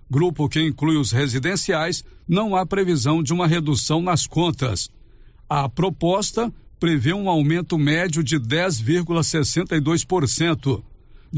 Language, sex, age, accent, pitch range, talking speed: Portuguese, male, 60-79, Brazilian, 145-180 Hz, 110 wpm